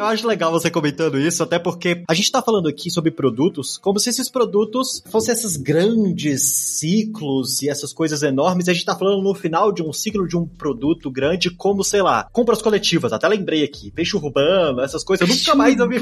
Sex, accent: male, Brazilian